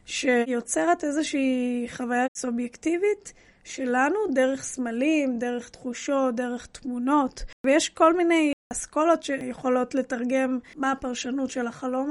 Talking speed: 105 wpm